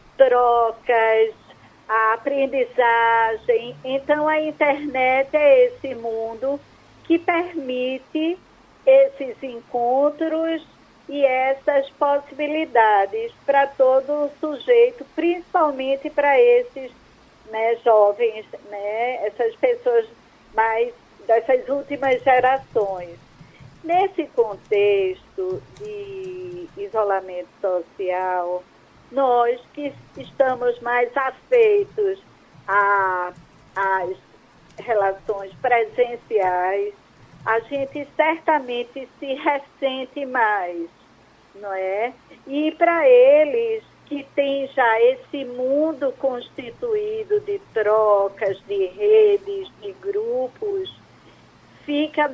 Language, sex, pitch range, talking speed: Portuguese, female, 225-320 Hz, 80 wpm